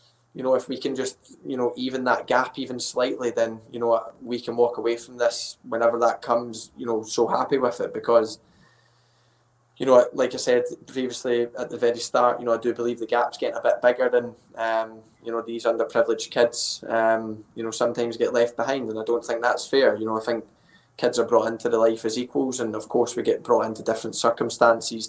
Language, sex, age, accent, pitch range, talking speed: English, male, 20-39, British, 115-125 Hz, 225 wpm